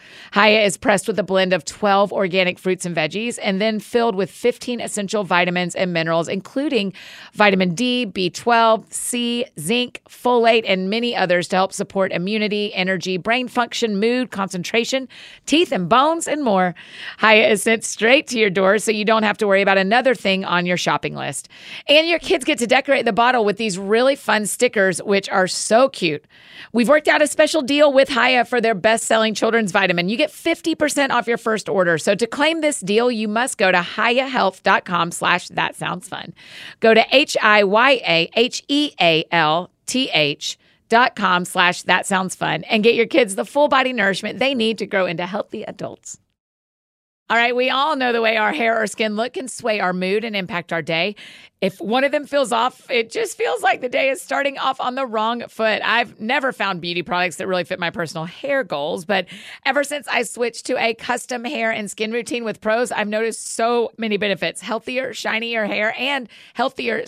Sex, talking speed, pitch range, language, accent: female, 190 wpm, 190-245 Hz, English, American